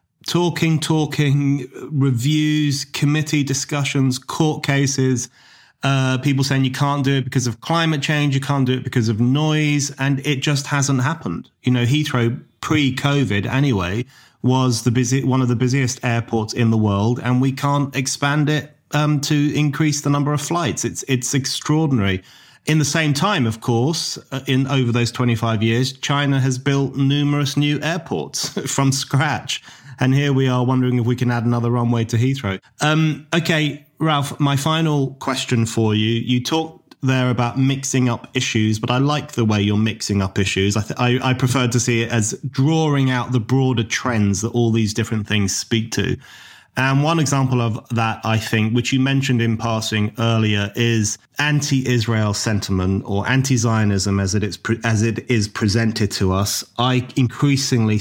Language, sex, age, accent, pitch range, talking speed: English, male, 30-49, British, 115-145 Hz, 180 wpm